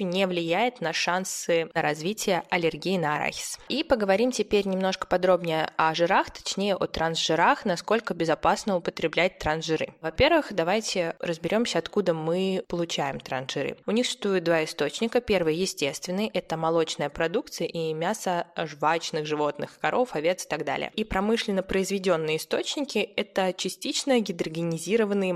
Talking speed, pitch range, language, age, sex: 130 wpm, 170-215 Hz, Russian, 20-39, female